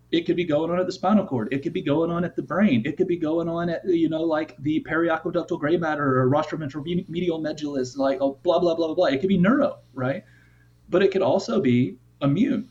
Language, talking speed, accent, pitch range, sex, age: English, 245 wpm, American, 130-165 Hz, male, 30-49